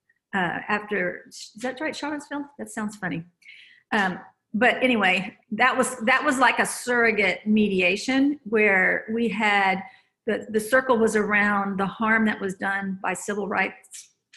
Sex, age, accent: female, 50-69, American